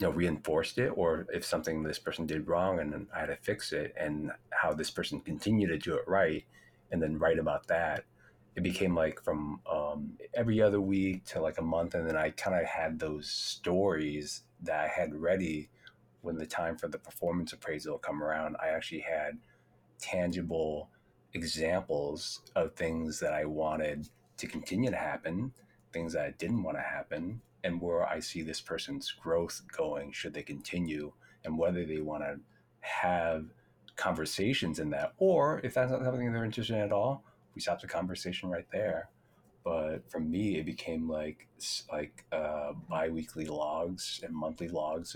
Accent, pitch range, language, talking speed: American, 75-90 Hz, English, 180 wpm